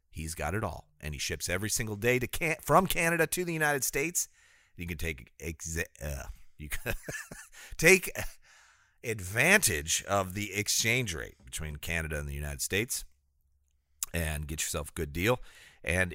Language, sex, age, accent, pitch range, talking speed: English, male, 40-59, American, 80-115 Hz, 165 wpm